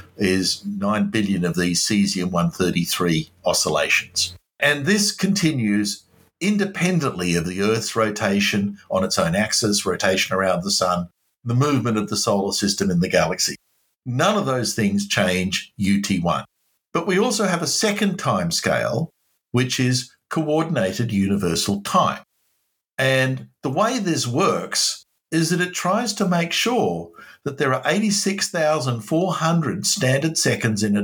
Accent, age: Australian, 60-79